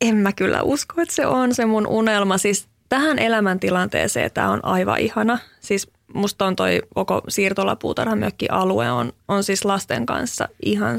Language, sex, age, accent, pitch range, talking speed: Finnish, female, 20-39, native, 185-245 Hz, 160 wpm